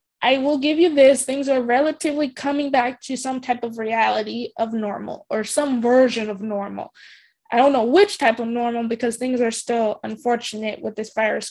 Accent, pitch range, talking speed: American, 230-285 Hz, 195 wpm